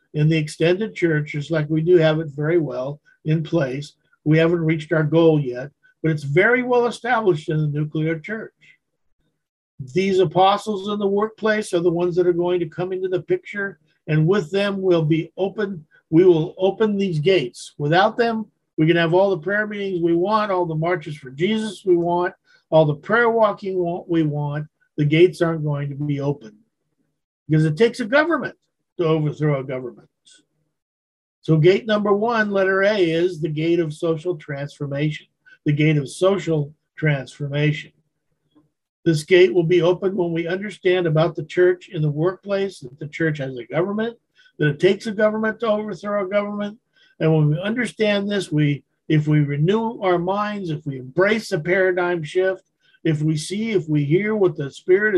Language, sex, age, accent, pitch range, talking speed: English, male, 50-69, American, 155-195 Hz, 180 wpm